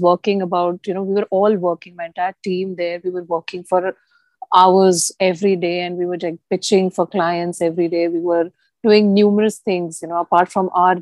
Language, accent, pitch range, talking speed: English, Indian, 175-200 Hz, 205 wpm